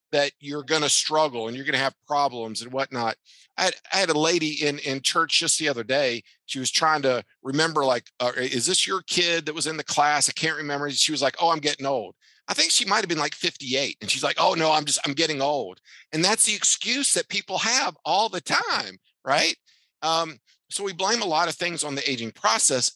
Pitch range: 130-160 Hz